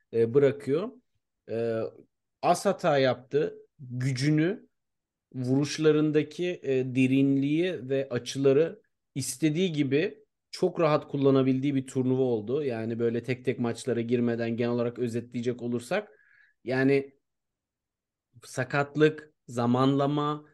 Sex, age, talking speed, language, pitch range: male, 40-59, 90 wpm, Turkish, 125-150 Hz